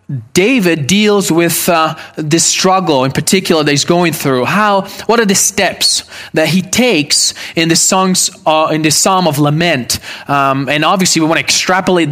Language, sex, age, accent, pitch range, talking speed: English, male, 20-39, Canadian, 135-180 Hz, 180 wpm